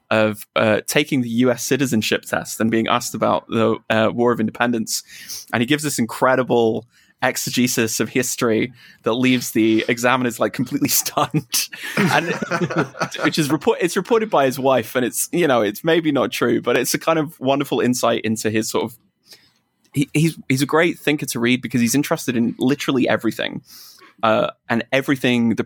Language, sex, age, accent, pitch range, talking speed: English, male, 20-39, British, 115-145 Hz, 170 wpm